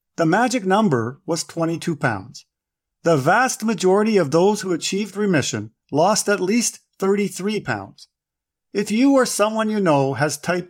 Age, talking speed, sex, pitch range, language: 50-69, 150 wpm, male, 145-220 Hz, English